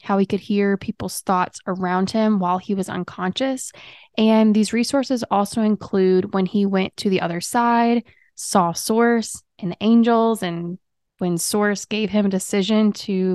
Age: 20-39